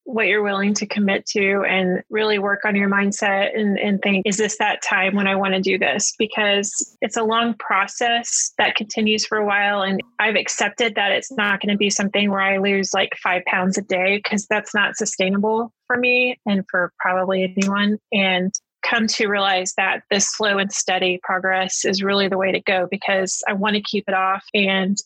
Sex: female